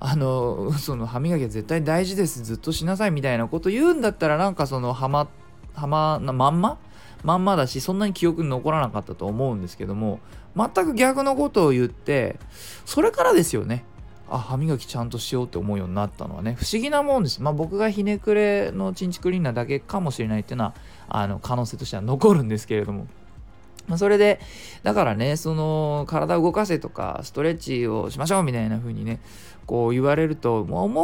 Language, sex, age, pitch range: Japanese, male, 20-39, 115-185 Hz